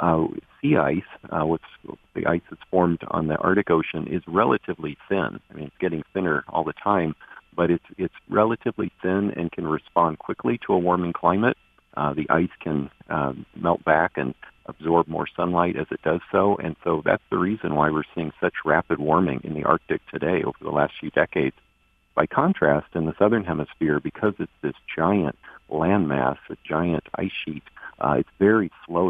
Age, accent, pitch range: 50-69, American, 75-85 Hz